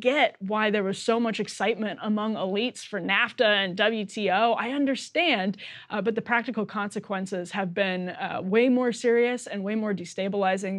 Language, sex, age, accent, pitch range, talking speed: English, female, 20-39, American, 190-230 Hz, 165 wpm